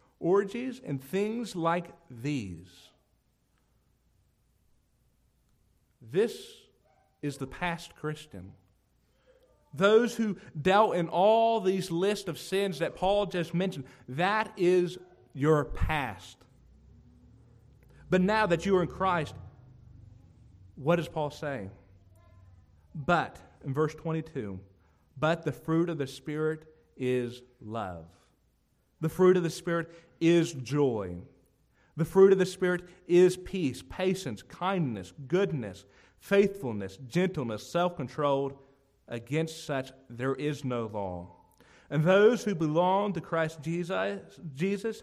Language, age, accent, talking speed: English, 50-69, American, 110 wpm